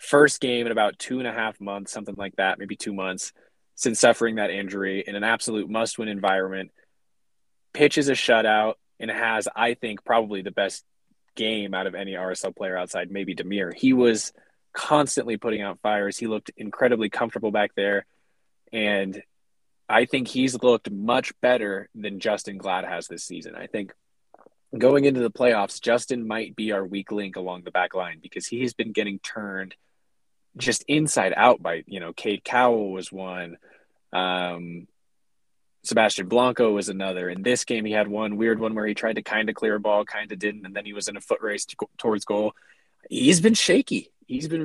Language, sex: English, male